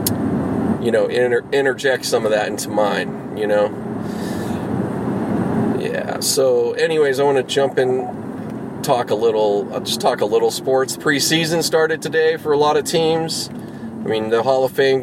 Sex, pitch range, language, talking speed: male, 120-155 Hz, English, 170 wpm